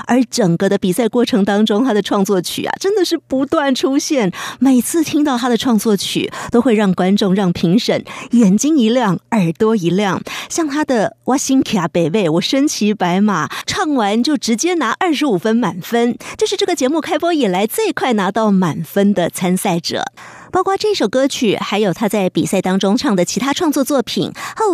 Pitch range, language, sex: 190-275 Hz, Chinese, female